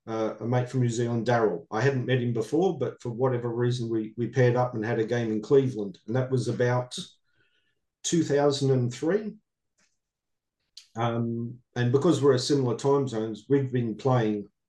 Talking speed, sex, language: 170 wpm, male, English